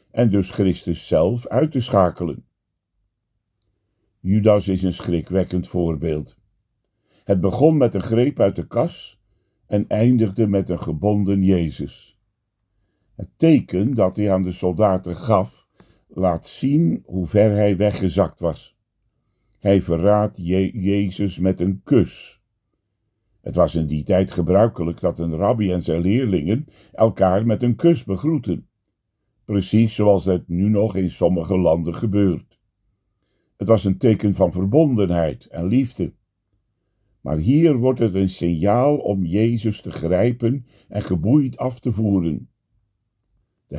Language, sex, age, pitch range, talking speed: Dutch, male, 60-79, 90-115 Hz, 135 wpm